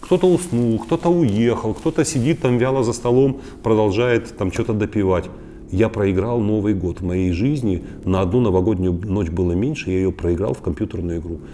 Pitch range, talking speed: 90-120 Hz, 170 wpm